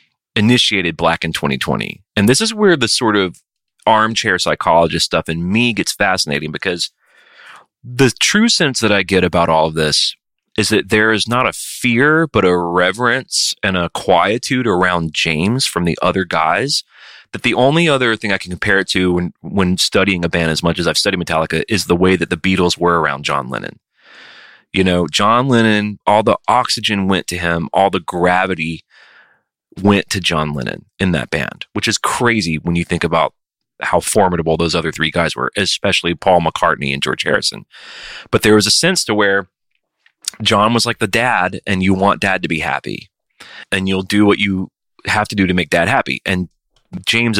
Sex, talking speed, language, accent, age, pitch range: male, 190 wpm, English, American, 30-49, 85-110 Hz